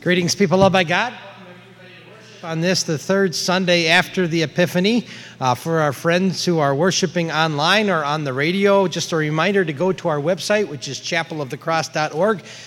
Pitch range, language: 145-185 Hz, English